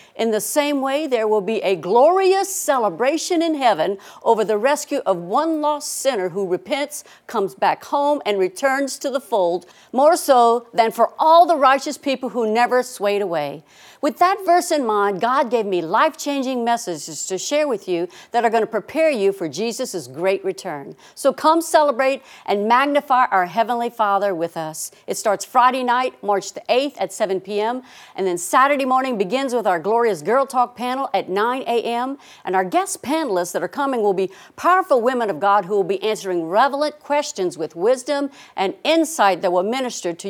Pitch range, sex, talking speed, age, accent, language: 190-275 Hz, female, 190 wpm, 60-79, American, English